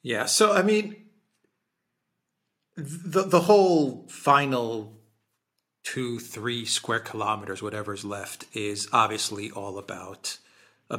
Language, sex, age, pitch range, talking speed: English, male, 40-59, 110-155 Hz, 105 wpm